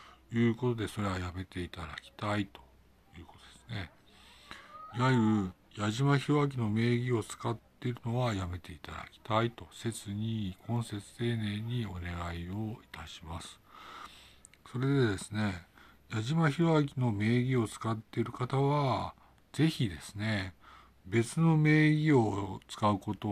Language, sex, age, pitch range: Japanese, male, 60-79, 100-125 Hz